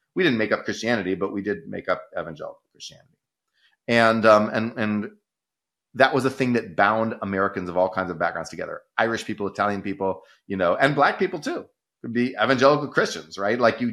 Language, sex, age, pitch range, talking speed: English, male, 30-49, 100-125 Hz, 200 wpm